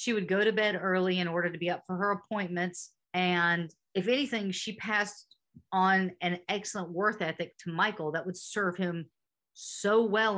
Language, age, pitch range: English, 40-59, 175-215 Hz